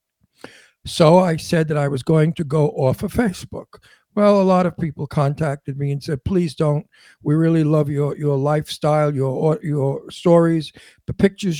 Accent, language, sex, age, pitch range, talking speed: American, English, male, 60-79, 150-195 Hz, 175 wpm